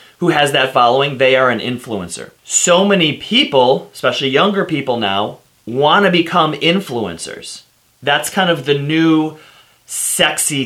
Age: 30-49